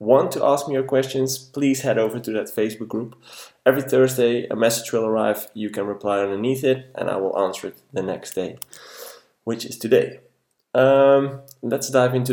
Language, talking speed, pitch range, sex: English, 190 wpm, 105-130 Hz, male